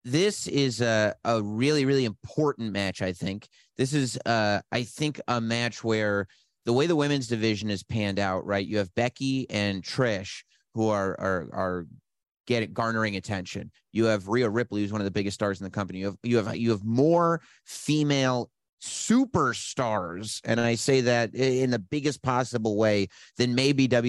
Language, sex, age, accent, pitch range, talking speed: English, male, 30-49, American, 105-125 Hz, 180 wpm